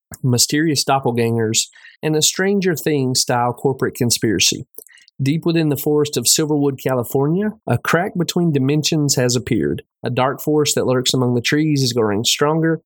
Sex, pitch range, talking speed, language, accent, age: male, 120-145 Hz, 155 wpm, English, American, 30-49